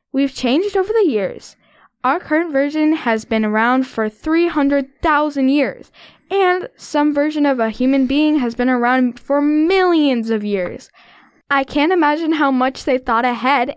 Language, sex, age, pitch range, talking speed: English, female, 10-29, 240-305 Hz, 155 wpm